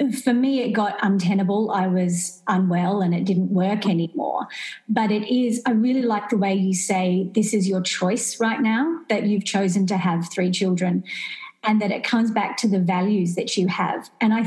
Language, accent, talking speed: English, Australian, 205 wpm